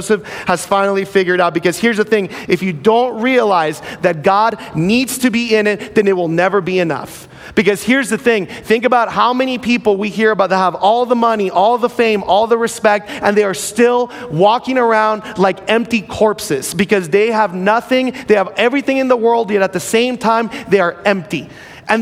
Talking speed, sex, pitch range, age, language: 210 wpm, male, 195-230 Hz, 30-49, English